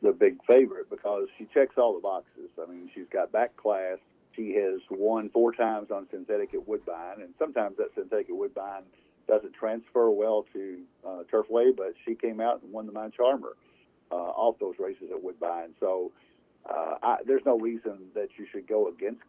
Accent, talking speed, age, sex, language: American, 195 wpm, 50-69, male, English